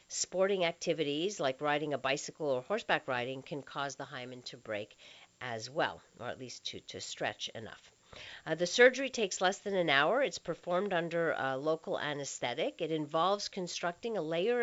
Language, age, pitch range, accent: English, 50-69, 145-200 Hz, American